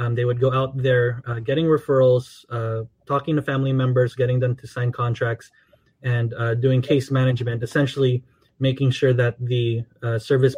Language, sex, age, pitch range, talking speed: English, male, 20-39, 120-140 Hz, 175 wpm